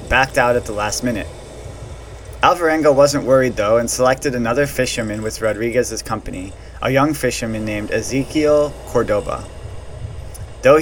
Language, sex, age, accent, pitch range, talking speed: English, male, 30-49, American, 105-135 Hz, 135 wpm